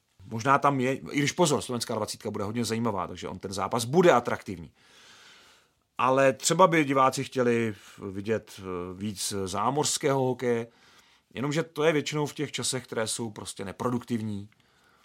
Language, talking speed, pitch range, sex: Czech, 150 wpm, 115-140 Hz, male